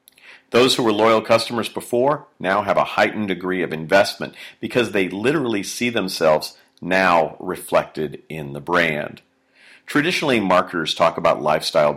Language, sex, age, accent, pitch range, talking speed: English, male, 40-59, American, 80-105 Hz, 140 wpm